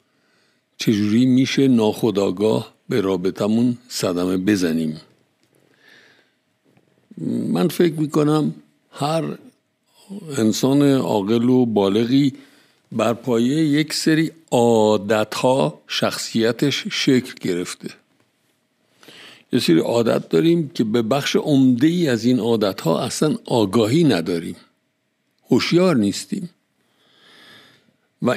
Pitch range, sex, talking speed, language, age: 110-150 Hz, male, 85 wpm, Persian, 60-79